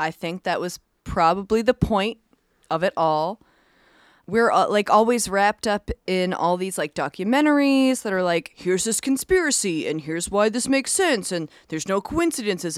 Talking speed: 175 wpm